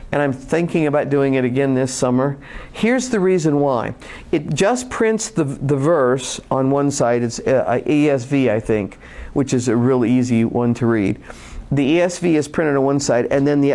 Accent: American